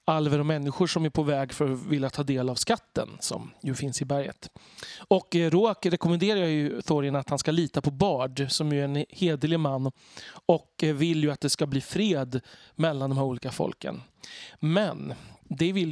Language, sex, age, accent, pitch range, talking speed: Swedish, male, 30-49, native, 145-175 Hz, 190 wpm